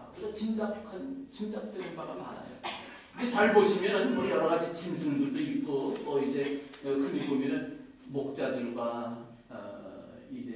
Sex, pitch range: male, 165-270 Hz